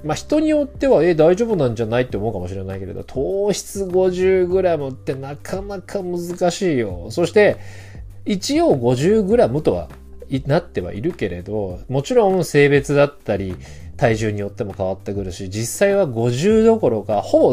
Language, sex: Japanese, male